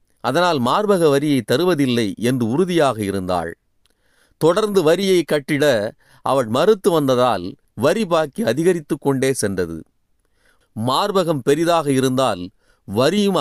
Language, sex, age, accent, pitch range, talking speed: Tamil, male, 40-59, native, 110-160 Hz, 95 wpm